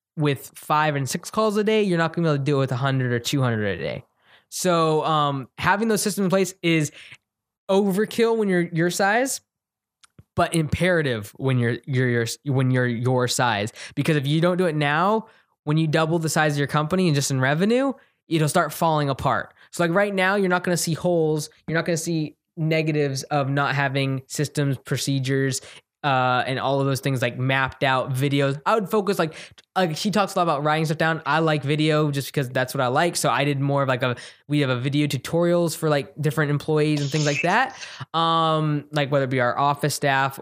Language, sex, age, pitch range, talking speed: English, male, 10-29, 135-165 Hz, 225 wpm